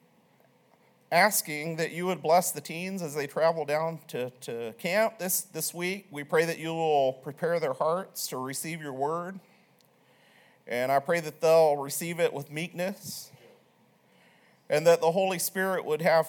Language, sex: English, male